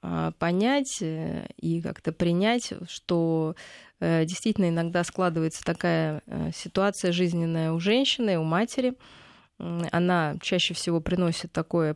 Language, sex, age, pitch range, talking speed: Russian, female, 20-39, 165-195 Hz, 100 wpm